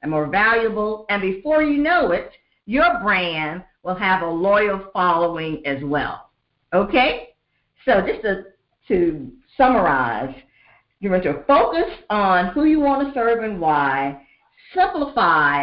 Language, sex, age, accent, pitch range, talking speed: English, female, 50-69, American, 165-275 Hz, 140 wpm